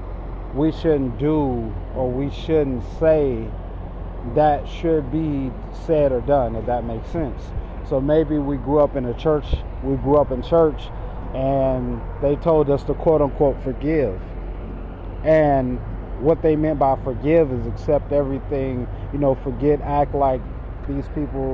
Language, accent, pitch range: English, American, 120-145 Hz